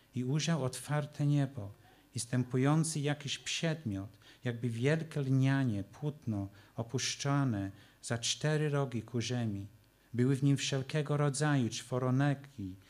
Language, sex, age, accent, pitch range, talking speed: Polish, male, 50-69, native, 120-140 Hz, 105 wpm